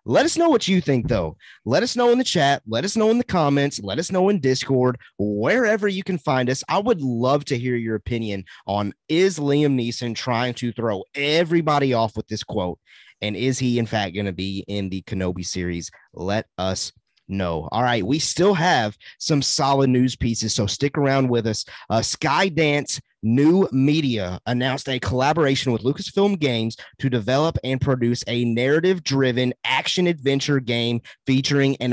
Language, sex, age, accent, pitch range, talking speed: English, male, 30-49, American, 115-155 Hz, 185 wpm